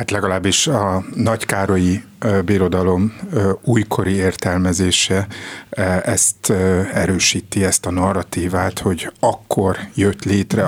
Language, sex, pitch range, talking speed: Hungarian, male, 90-100 Hz, 90 wpm